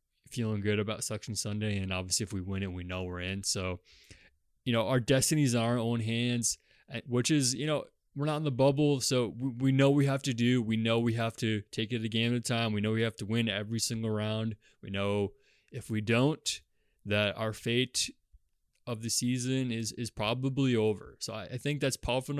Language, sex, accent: English, male, American